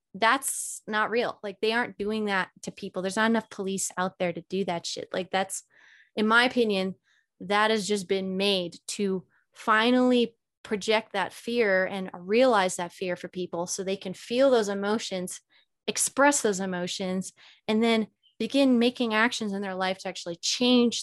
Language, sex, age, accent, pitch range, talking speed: English, female, 20-39, American, 185-225 Hz, 175 wpm